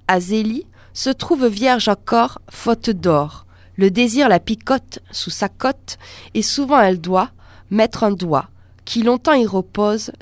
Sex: female